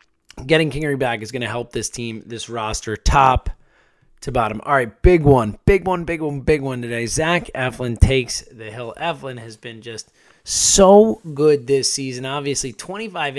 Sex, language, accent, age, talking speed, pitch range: male, English, American, 20-39, 180 wpm, 125-155 Hz